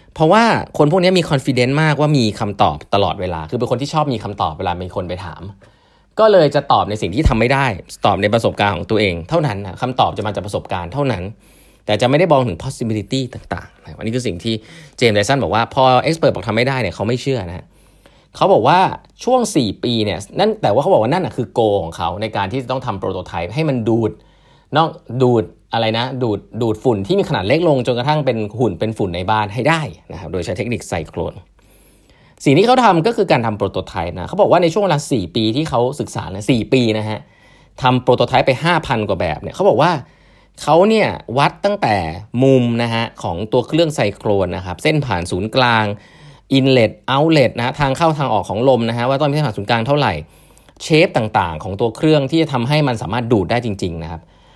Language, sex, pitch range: English, male, 100-140 Hz